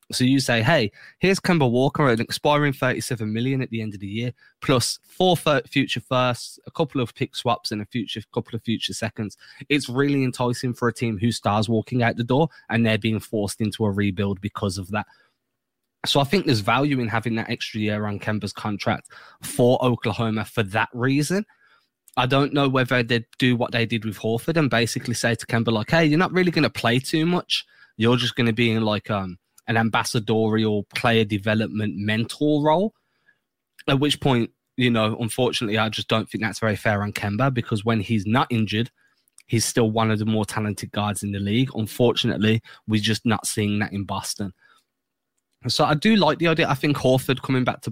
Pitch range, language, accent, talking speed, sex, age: 110-130 Hz, English, British, 205 wpm, male, 20-39